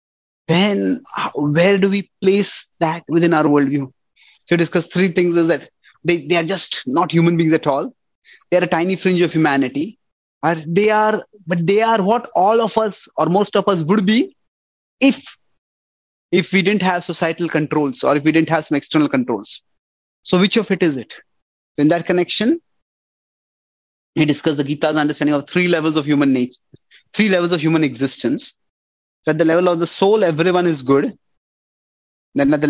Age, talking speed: 20-39, 180 wpm